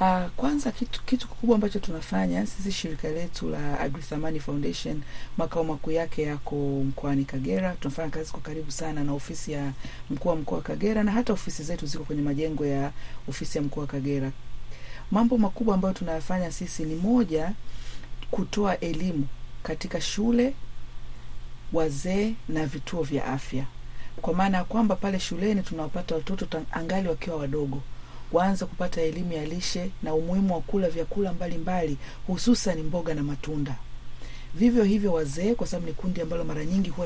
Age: 40-59